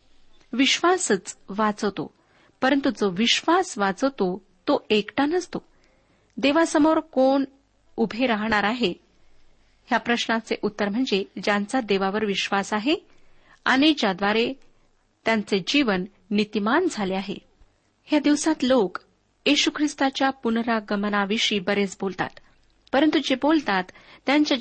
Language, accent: Marathi, native